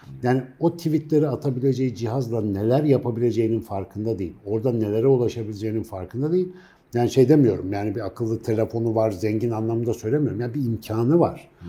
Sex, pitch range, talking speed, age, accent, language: male, 110-150 Hz, 155 wpm, 60-79, native, Turkish